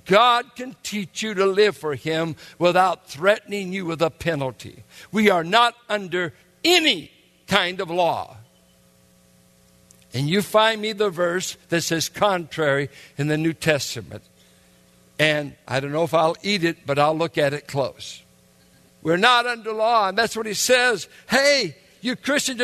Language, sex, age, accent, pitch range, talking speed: English, male, 60-79, American, 155-240 Hz, 160 wpm